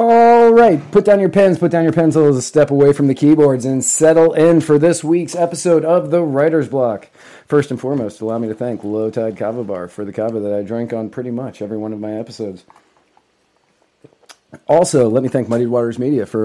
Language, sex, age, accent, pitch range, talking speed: English, male, 30-49, American, 115-140 Hz, 215 wpm